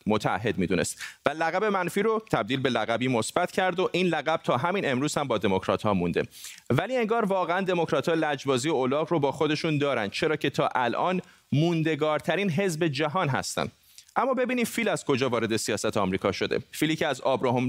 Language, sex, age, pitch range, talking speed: Persian, male, 30-49, 125-175 Hz, 185 wpm